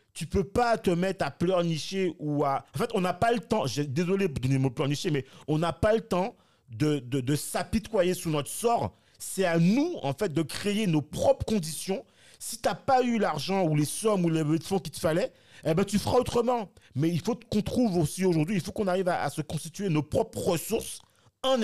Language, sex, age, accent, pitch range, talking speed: French, male, 40-59, French, 150-220 Hz, 240 wpm